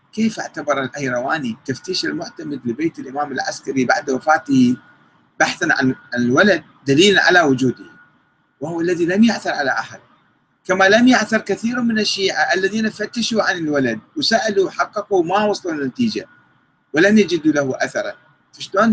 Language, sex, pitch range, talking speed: Arabic, male, 135-220 Hz, 135 wpm